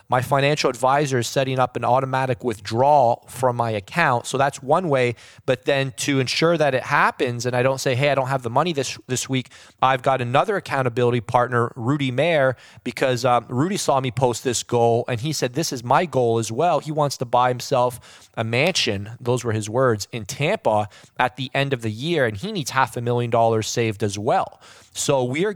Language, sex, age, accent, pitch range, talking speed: English, male, 20-39, American, 125-170 Hz, 215 wpm